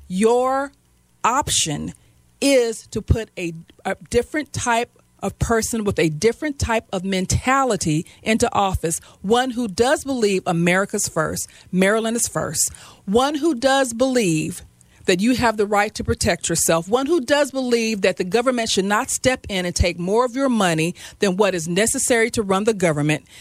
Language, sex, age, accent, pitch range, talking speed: English, female, 40-59, American, 190-265 Hz, 165 wpm